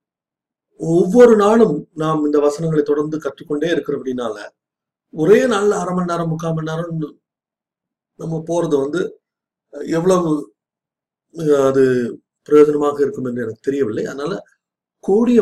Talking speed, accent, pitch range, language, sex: 105 wpm, native, 135-180 Hz, Tamil, male